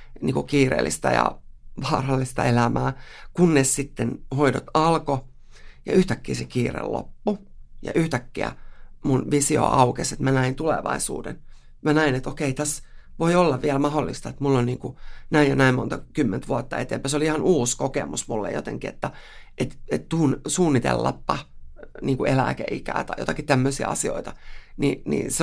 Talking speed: 155 wpm